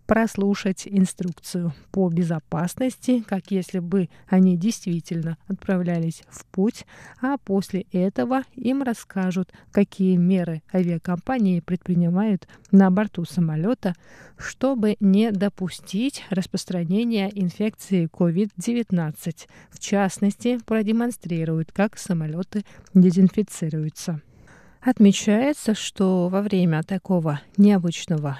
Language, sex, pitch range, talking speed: Russian, female, 175-210 Hz, 90 wpm